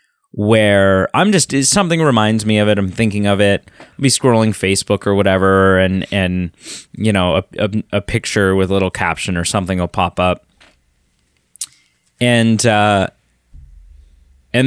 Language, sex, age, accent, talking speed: English, male, 20-39, American, 155 wpm